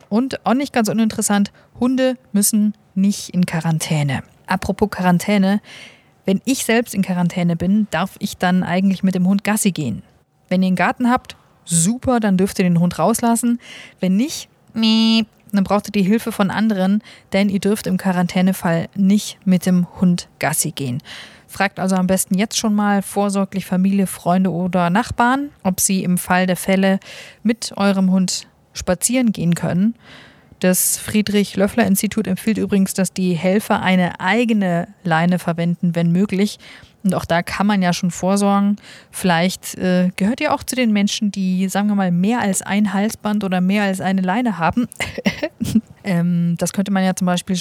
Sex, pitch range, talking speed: female, 180-210 Hz, 170 wpm